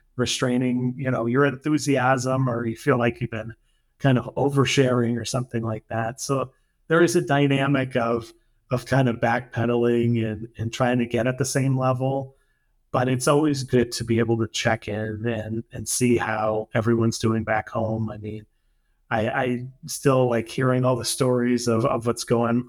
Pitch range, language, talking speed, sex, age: 115-130 Hz, English, 180 wpm, male, 30-49